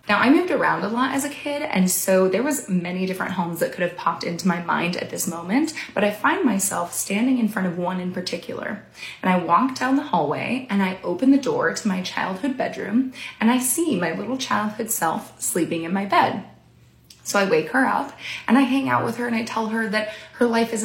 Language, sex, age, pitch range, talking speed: English, female, 20-39, 185-250 Hz, 235 wpm